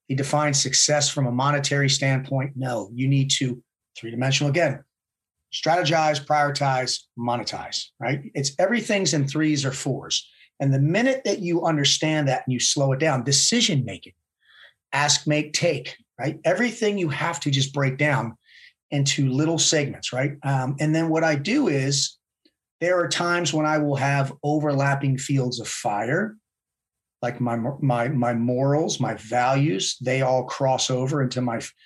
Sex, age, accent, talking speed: male, 40-59, American, 155 wpm